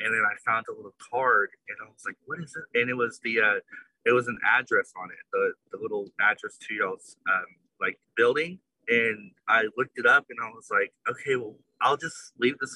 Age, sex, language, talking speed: 20-39, male, English, 230 wpm